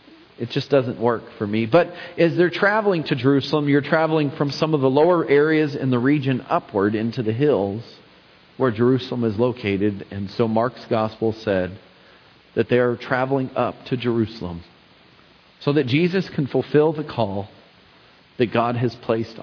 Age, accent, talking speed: 40-59, American, 165 wpm